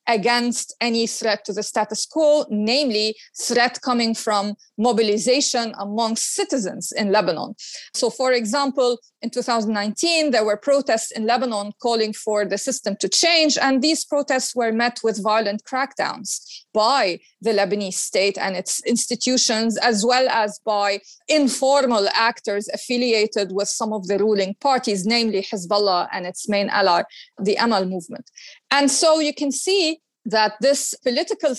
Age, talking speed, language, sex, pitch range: 30-49, 145 wpm, English, female, 220-285 Hz